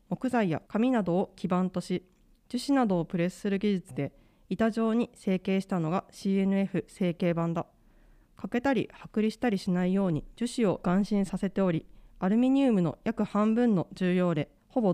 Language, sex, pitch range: Japanese, female, 175-225 Hz